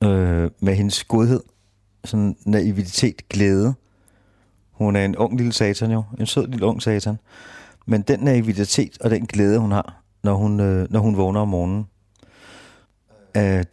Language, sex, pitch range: Danish, male, 100-115 Hz